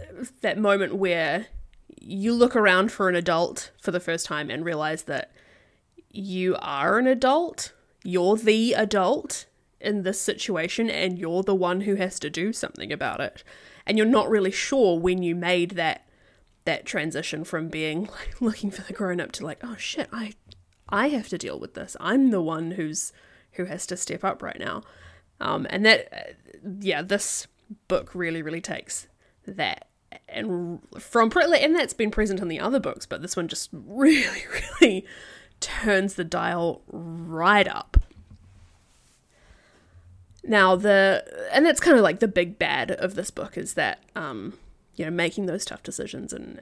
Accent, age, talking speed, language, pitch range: Australian, 20-39, 170 wpm, English, 170-215 Hz